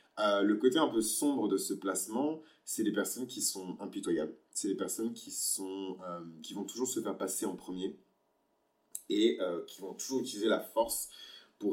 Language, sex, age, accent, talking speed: French, male, 30-49, French, 195 wpm